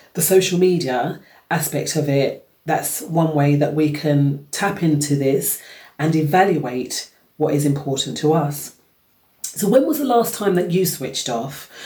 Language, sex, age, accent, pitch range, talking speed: English, female, 40-59, British, 150-180 Hz, 160 wpm